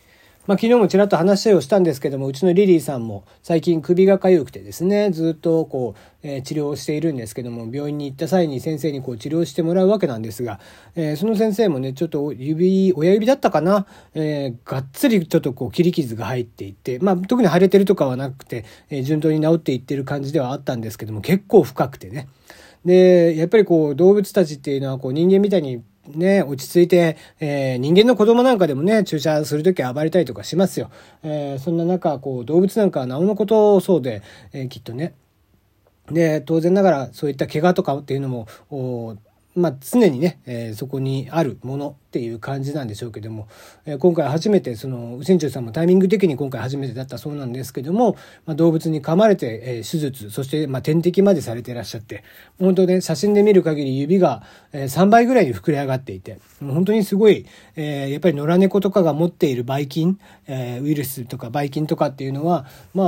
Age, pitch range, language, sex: 40-59, 130-180 Hz, Japanese, male